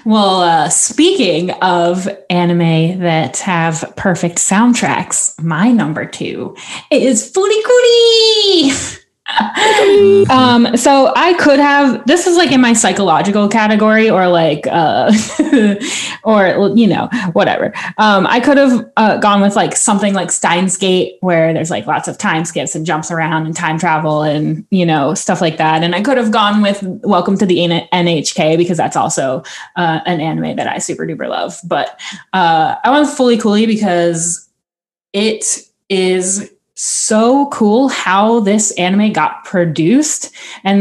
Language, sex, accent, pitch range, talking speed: English, female, American, 175-230 Hz, 150 wpm